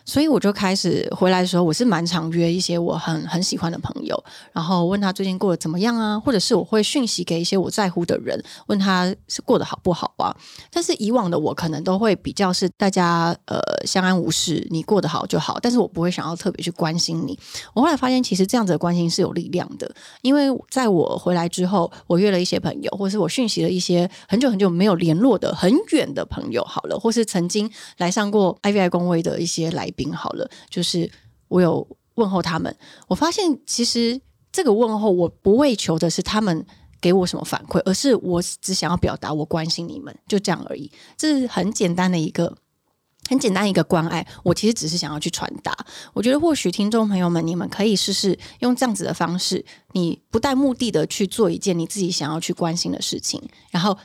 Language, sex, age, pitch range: Chinese, female, 30-49, 170-215 Hz